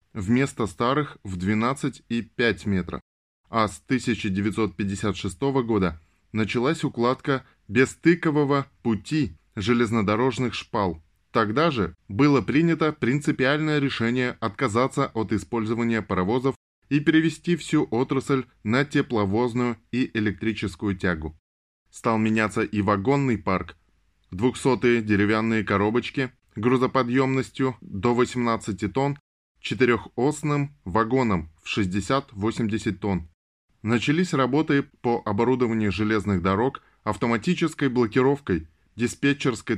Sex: male